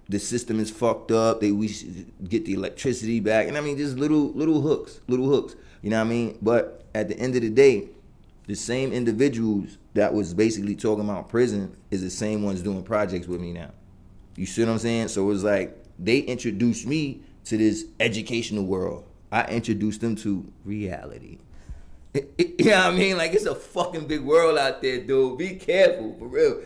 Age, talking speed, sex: 20-39, 205 wpm, male